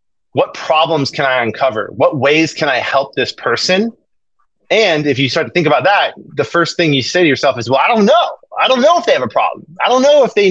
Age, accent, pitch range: 30-49, American, 130-215 Hz